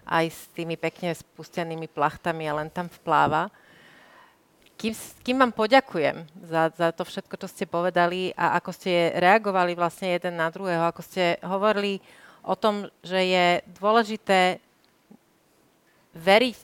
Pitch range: 170-200 Hz